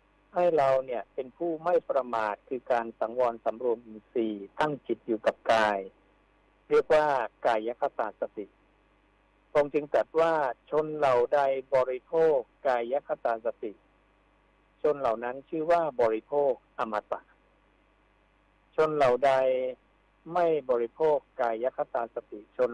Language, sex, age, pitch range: Thai, male, 60-79, 115-150 Hz